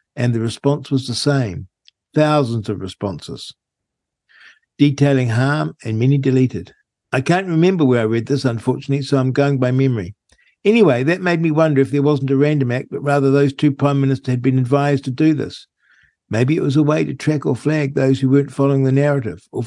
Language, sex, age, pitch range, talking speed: English, male, 60-79, 125-150 Hz, 200 wpm